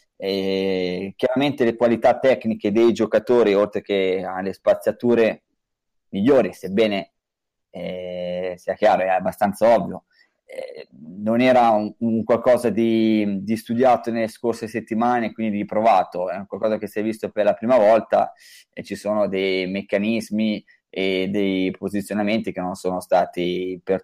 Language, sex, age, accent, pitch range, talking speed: Italian, male, 20-39, native, 100-120 Hz, 140 wpm